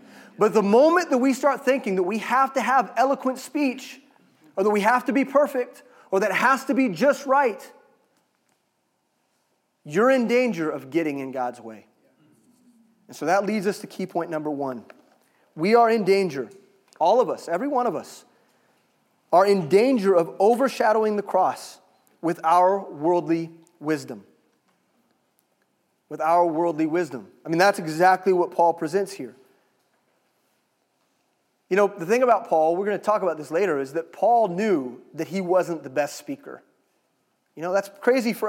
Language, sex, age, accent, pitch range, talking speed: English, male, 30-49, American, 155-230 Hz, 170 wpm